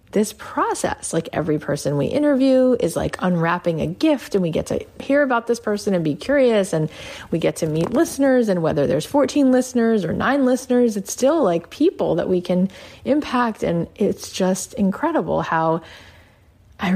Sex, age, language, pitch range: female, 30-49, English, 155-215 Hz